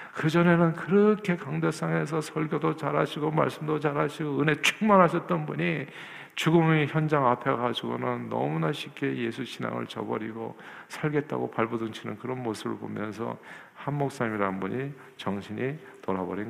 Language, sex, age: Korean, male, 50-69